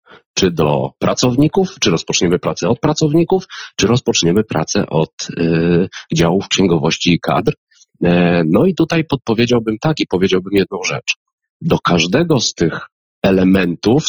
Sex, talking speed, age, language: male, 135 wpm, 40-59, Polish